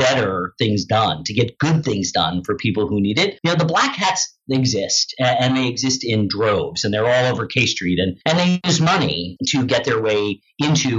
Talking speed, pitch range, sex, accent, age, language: 220 wpm, 110-140 Hz, male, American, 40-59, English